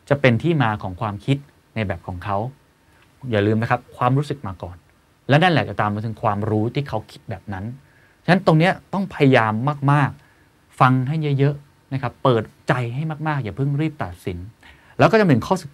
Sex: male